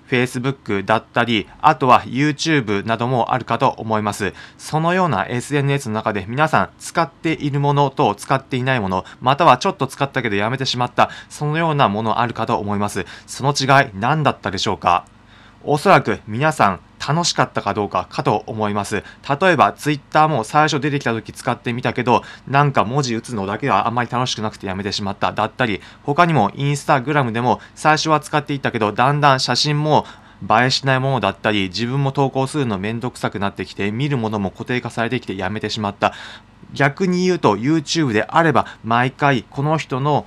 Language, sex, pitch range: Japanese, male, 105-145 Hz